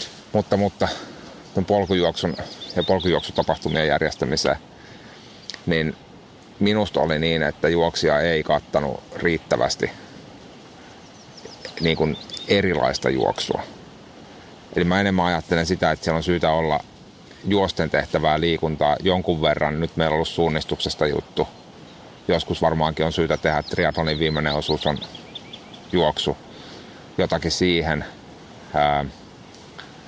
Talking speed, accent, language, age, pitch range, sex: 105 wpm, native, Finnish, 30-49, 75-90 Hz, male